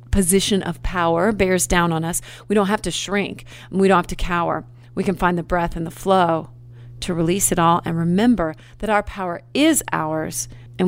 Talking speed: 205 wpm